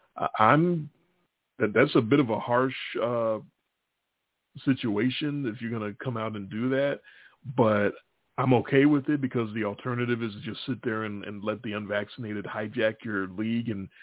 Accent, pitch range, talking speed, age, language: American, 105-130 Hz, 170 wpm, 40-59, English